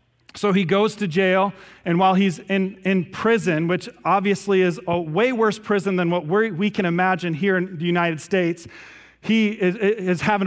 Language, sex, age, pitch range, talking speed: English, male, 40-59, 180-215 Hz, 190 wpm